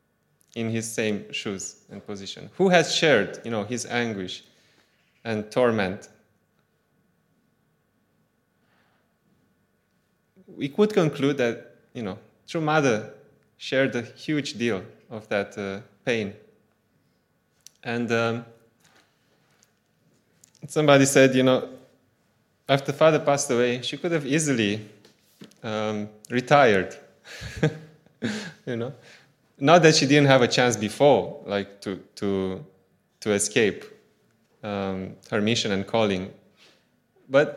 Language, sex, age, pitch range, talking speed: English, male, 20-39, 105-135 Hz, 110 wpm